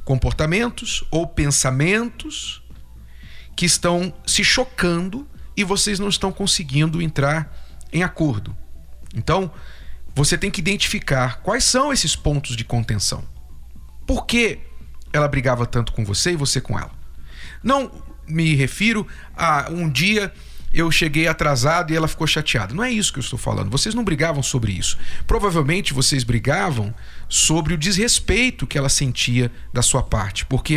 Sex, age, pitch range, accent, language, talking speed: male, 40-59, 120-175 Hz, Brazilian, Portuguese, 145 wpm